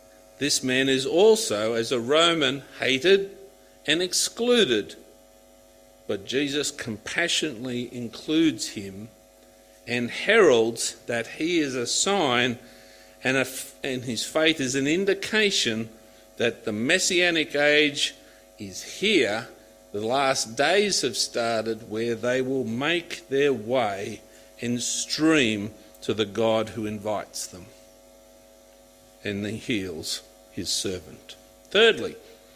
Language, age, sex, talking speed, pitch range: English, 50-69, male, 110 wpm, 110-150 Hz